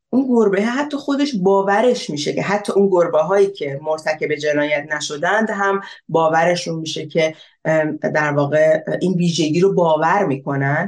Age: 30-49